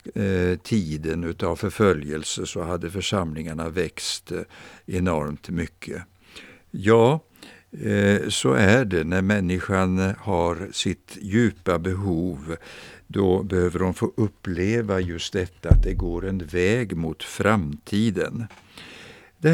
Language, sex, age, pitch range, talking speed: Swedish, male, 60-79, 85-105 Hz, 105 wpm